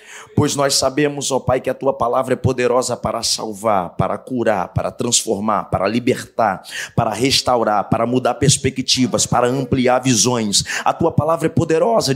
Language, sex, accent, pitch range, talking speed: Portuguese, male, Brazilian, 130-160 Hz, 160 wpm